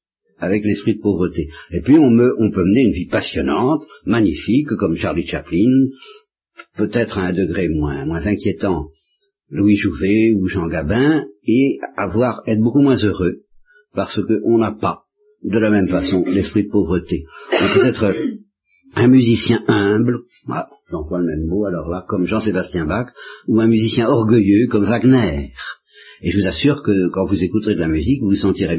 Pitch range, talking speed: 95-140 Hz, 175 wpm